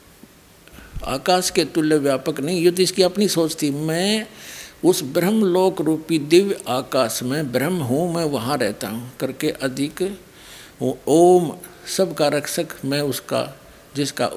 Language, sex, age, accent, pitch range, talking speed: Hindi, male, 60-79, native, 140-180 Hz, 140 wpm